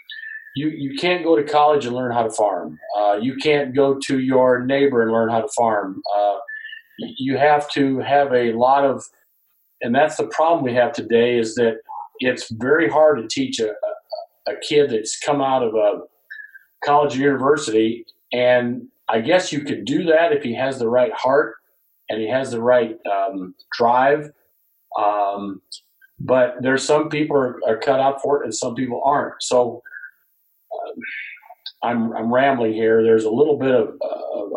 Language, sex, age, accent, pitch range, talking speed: English, male, 50-69, American, 115-150 Hz, 175 wpm